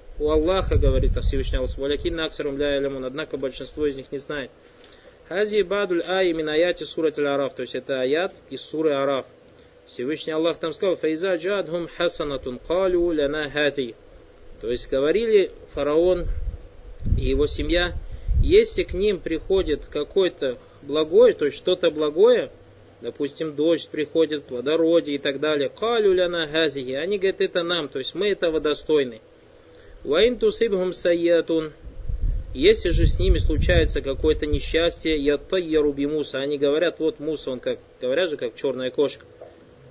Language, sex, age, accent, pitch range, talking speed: Russian, male, 20-39, native, 145-195 Hz, 135 wpm